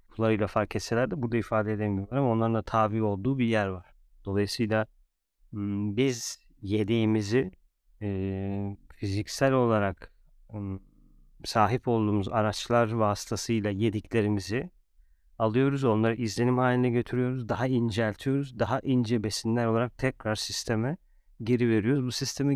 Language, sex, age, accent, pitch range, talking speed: Turkish, male, 40-59, native, 105-125 Hz, 110 wpm